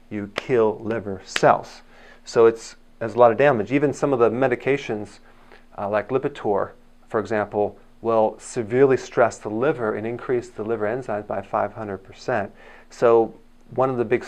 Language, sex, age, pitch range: English, male, 40-59, 110-135 Hz